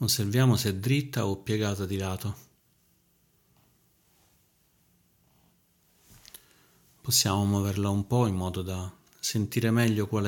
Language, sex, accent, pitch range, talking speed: Italian, male, native, 100-115 Hz, 105 wpm